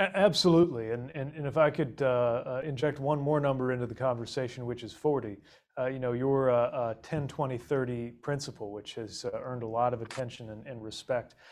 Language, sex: English, male